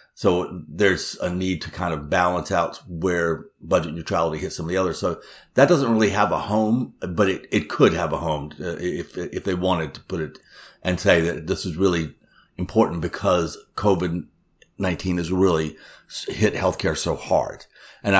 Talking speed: 180 wpm